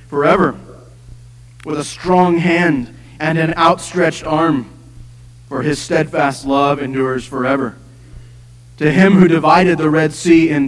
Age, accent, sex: 40-59, American, male